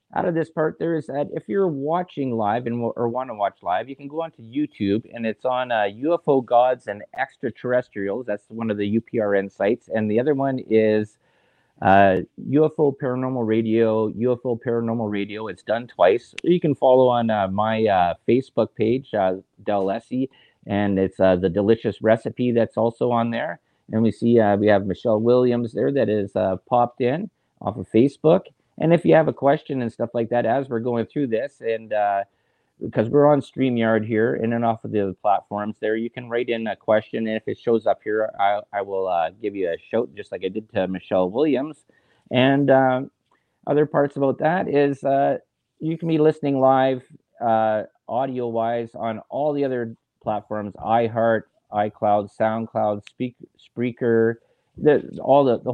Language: English